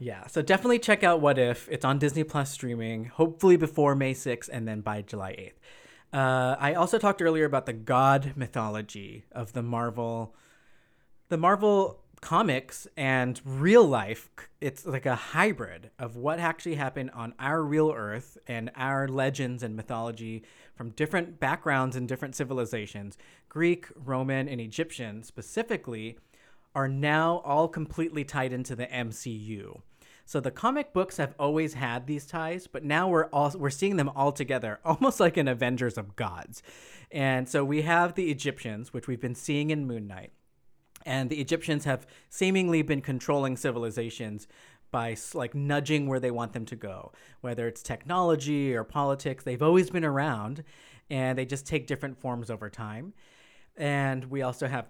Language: English